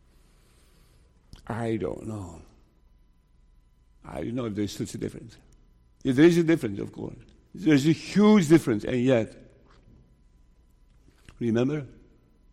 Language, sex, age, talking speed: English, male, 60-79, 115 wpm